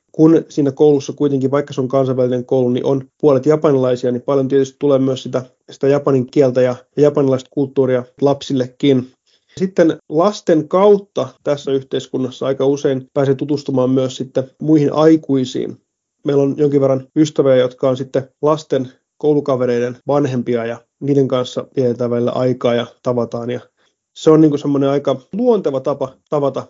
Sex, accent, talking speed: male, native, 145 wpm